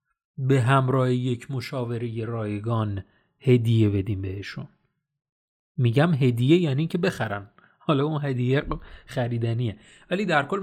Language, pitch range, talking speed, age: Persian, 120-165 Hz, 115 wpm, 30-49